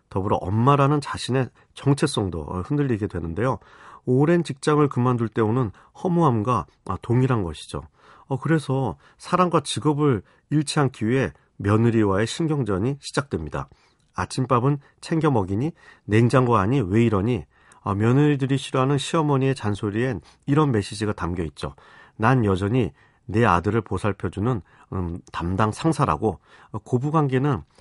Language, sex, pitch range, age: Korean, male, 100-140 Hz, 40-59